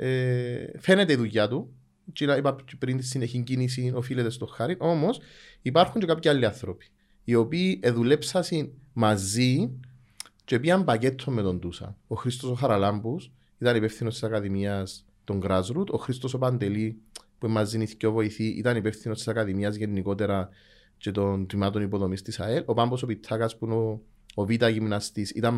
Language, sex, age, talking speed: Greek, male, 30-49, 170 wpm